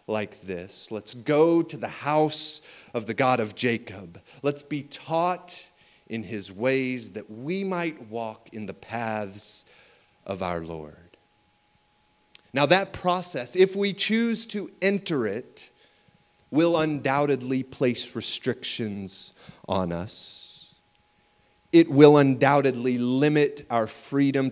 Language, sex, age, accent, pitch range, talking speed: English, male, 30-49, American, 100-150 Hz, 120 wpm